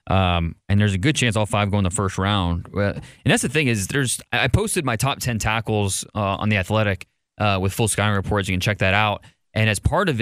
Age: 20-39